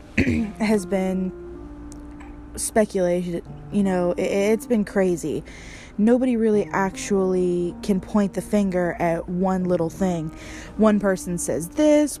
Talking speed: 115 wpm